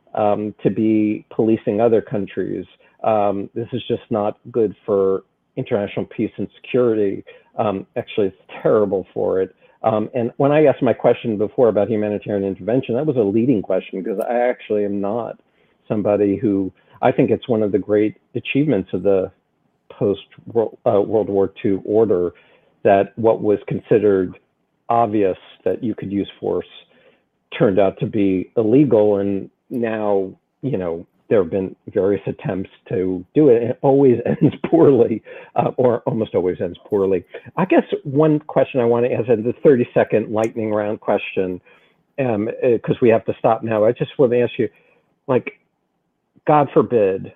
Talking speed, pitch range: 165 wpm, 100-120 Hz